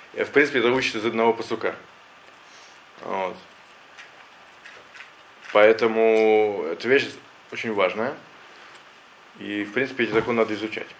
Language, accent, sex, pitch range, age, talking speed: Russian, native, male, 110-130 Hz, 20-39, 115 wpm